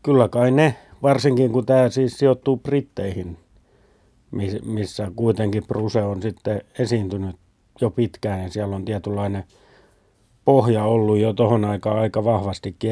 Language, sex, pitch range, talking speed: Finnish, male, 105-130 Hz, 130 wpm